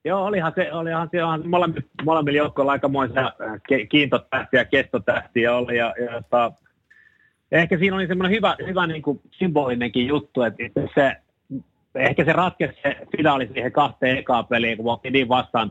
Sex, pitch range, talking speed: male, 115-150 Hz, 165 wpm